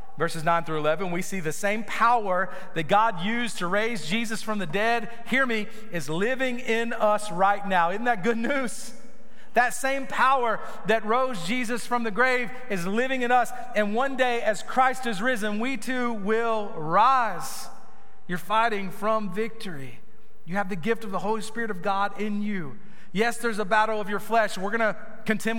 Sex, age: male, 40-59